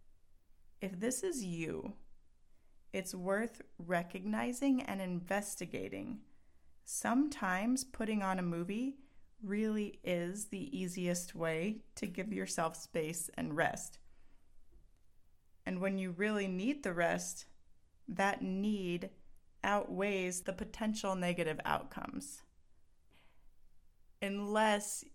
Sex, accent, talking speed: female, American, 95 wpm